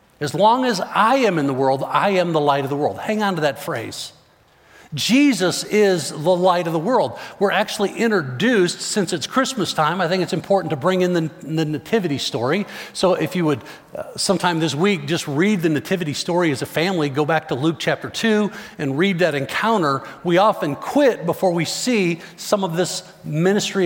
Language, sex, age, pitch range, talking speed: English, male, 50-69, 155-195 Hz, 205 wpm